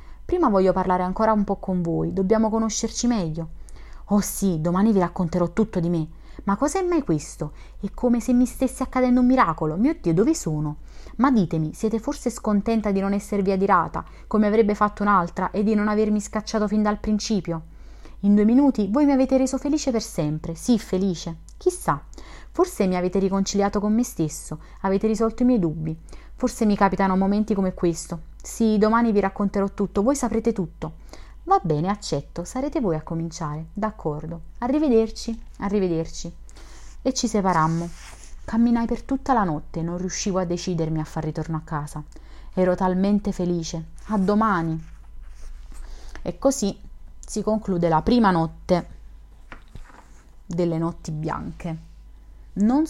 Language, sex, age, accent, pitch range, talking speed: Italian, female, 30-49, native, 165-225 Hz, 155 wpm